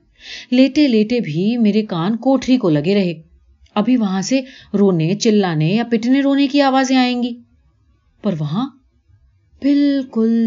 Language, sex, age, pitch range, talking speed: Urdu, female, 30-49, 170-250 Hz, 130 wpm